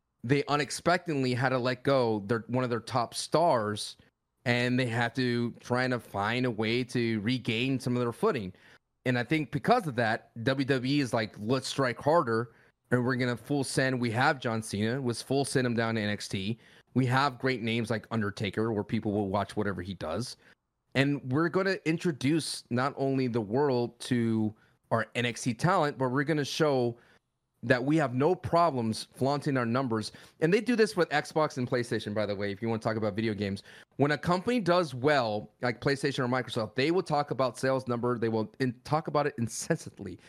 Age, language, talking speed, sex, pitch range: 30-49, English, 200 wpm, male, 115-150 Hz